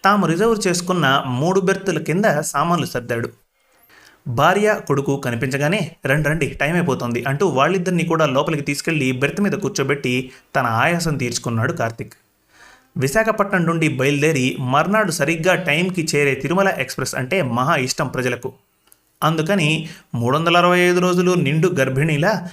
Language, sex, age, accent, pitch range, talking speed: Telugu, male, 30-49, native, 135-180 Hz, 120 wpm